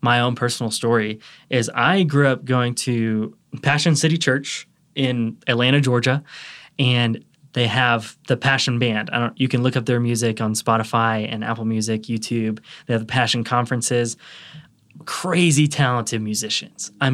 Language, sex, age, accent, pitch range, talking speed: English, male, 20-39, American, 115-145 Hz, 160 wpm